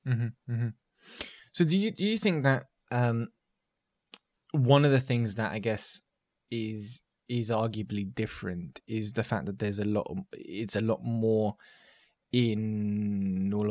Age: 20-39